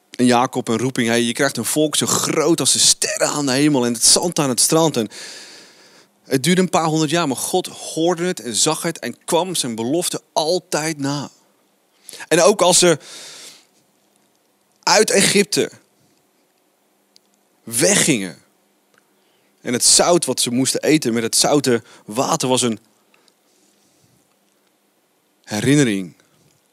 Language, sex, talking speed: Dutch, male, 145 wpm